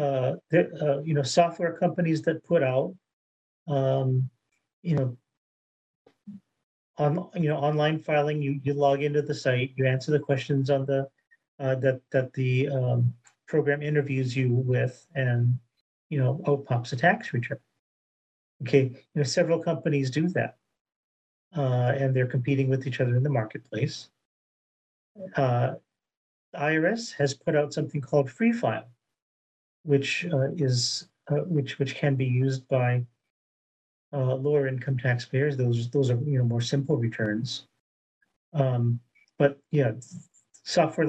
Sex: male